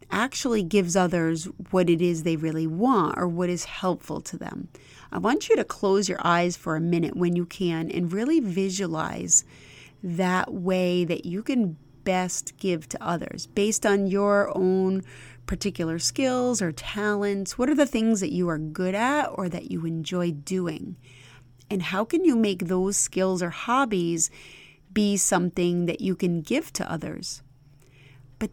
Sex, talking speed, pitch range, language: female, 170 wpm, 165-205 Hz, English